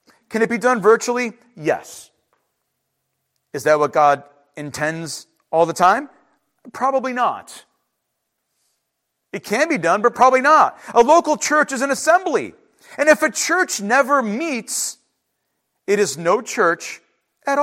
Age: 40-59